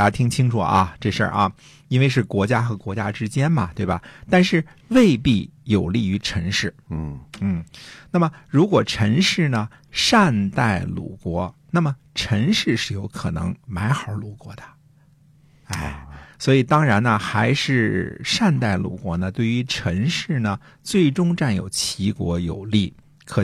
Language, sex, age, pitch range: Chinese, male, 50-69, 95-135 Hz